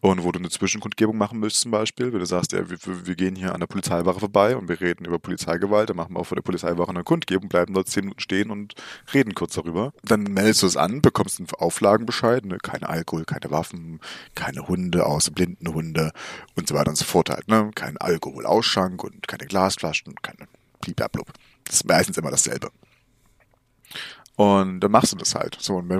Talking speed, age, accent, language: 210 wpm, 30-49, German, German